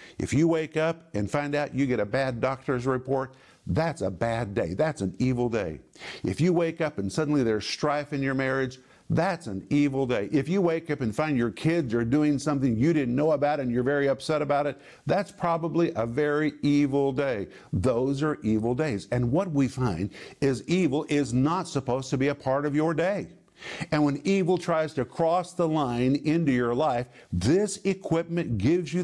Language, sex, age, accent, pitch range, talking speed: English, male, 50-69, American, 125-160 Hz, 205 wpm